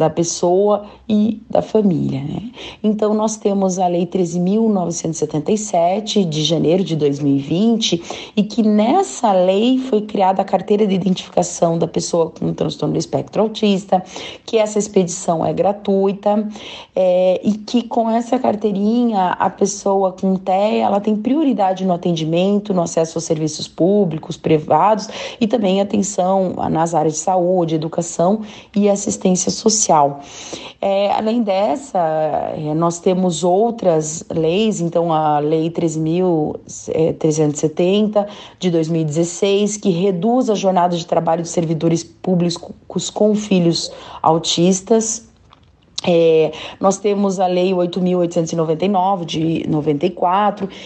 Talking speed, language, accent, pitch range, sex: 115 wpm, Portuguese, Brazilian, 170-210 Hz, female